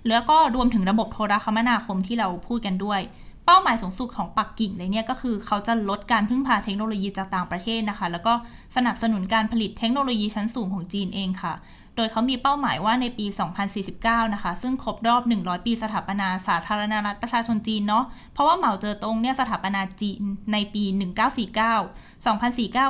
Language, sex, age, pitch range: Thai, female, 10-29, 200-240 Hz